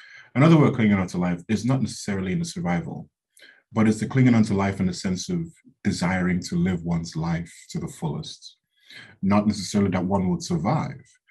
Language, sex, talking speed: English, male, 195 wpm